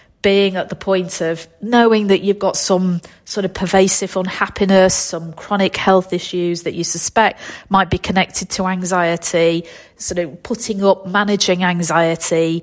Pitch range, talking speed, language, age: 170-195 Hz, 150 wpm, English, 40-59